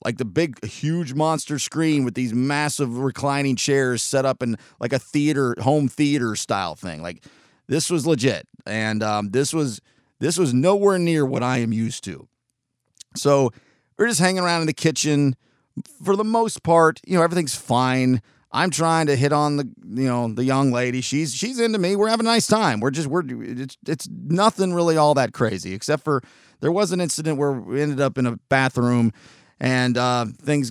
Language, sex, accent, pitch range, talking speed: English, male, American, 125-155 Hz, 195 wpm